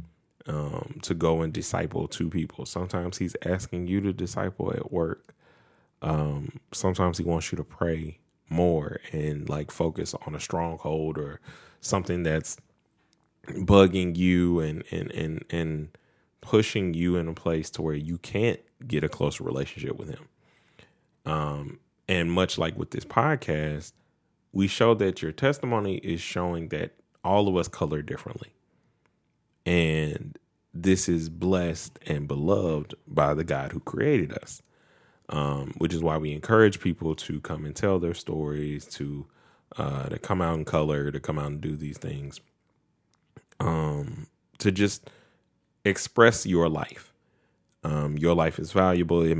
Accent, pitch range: American, 75-95 Hz